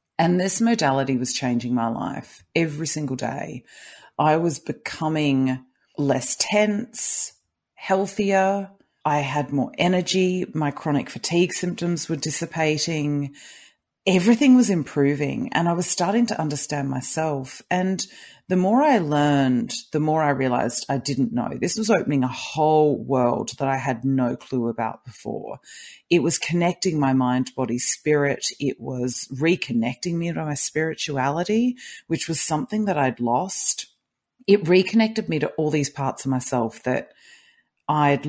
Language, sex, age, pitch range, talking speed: English, female, 40-59, 135-180 Hz, 145 wpm